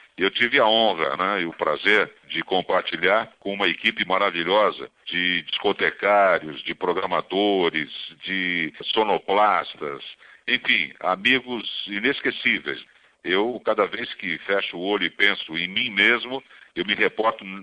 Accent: Brazilian